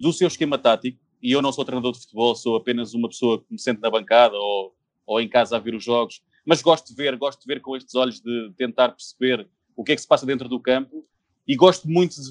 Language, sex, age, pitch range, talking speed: Portuguese, male, 20-39, 125-165 Hz, 265 wpm